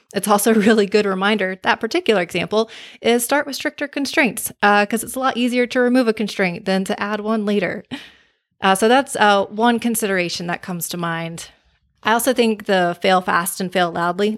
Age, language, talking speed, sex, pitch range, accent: 30-49, English, 200 wpm, female, 175-210 Hz, American